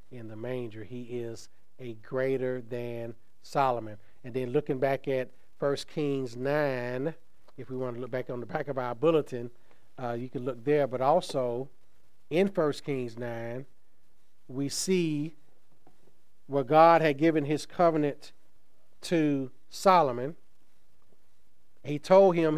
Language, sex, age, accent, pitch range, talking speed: English, male, 40-59, American, 120-150 Hz, 140 wpm